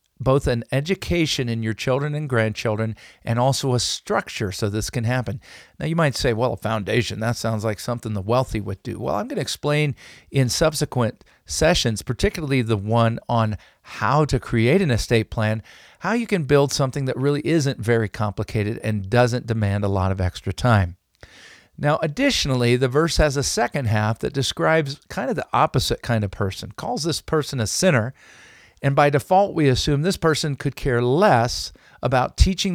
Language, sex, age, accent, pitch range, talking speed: English, male, 50-69, American, 110-150 Hz, 185 wpm